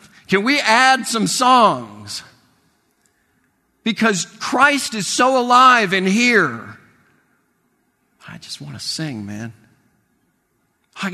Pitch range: 150-220 Hz